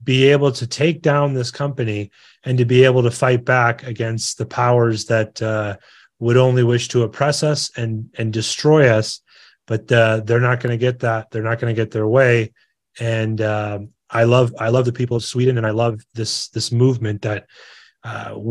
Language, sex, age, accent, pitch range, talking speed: Swedish, male, 30-49, American, 115-130 Hz, 200 wpm